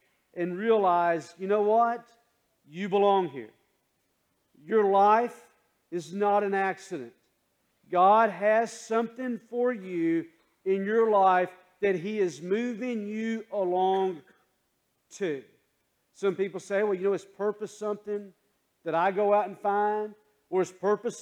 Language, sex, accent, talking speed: English, male, American, 135 wpm